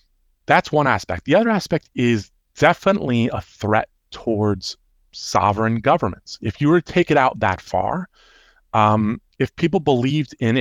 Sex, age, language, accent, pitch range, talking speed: male, 30-49, English, American, 105-140 Hz, 155 wpm